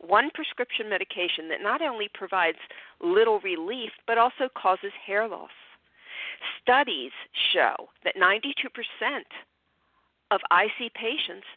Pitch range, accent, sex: 185-290 Hz, American, female